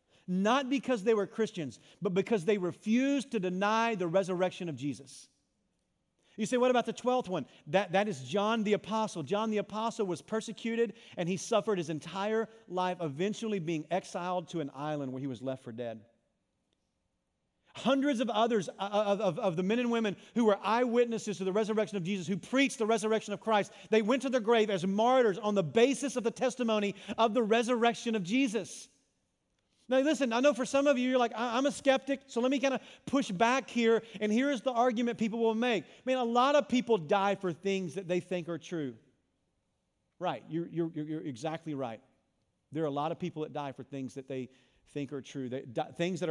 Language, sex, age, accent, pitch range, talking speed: English, male, 40-59, American, 145-225 Hz, 205 wpm